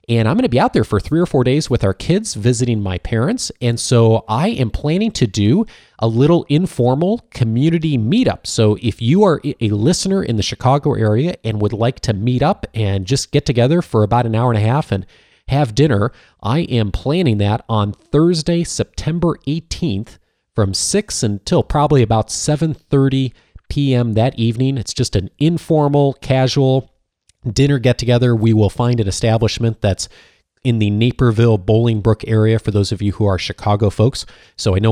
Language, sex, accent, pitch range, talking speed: English, male, American, 105-150 Hz, 180 wpm